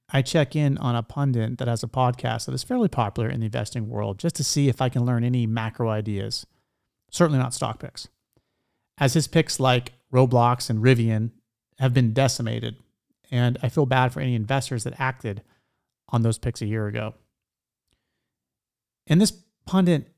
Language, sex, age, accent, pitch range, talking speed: English, male, 30-49, American, 115-150 Hz, 180 wpm